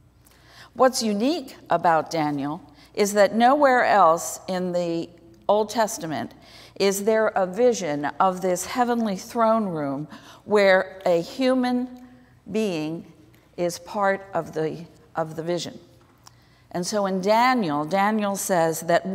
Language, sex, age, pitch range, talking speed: English, female, 50-69, 160-210 Hz, 120 wpm